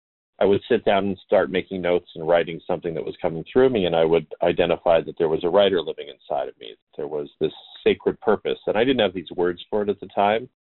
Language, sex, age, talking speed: English, male, 40-59, 260 wpm